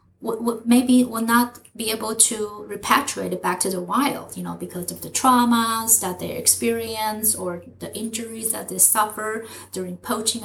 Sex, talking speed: female, 165 wpm